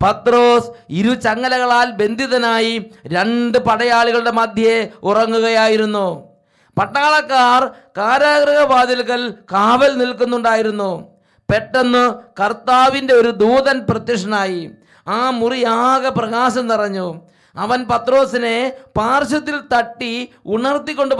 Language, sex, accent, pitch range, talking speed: English, male, Indian, 205-260 Hz, 70 wpm